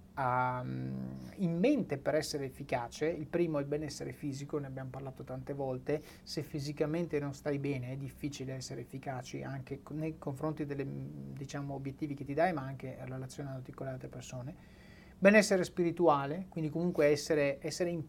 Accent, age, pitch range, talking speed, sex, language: native, 30-49, 140-170 Hz, 165 wpm, male, Italian